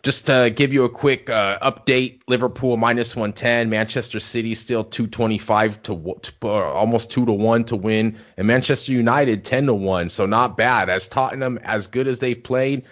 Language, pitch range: English, 105-130 Hz